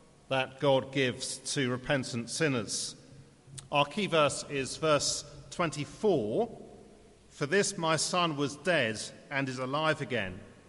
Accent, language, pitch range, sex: British, English, 130-155 Hz, male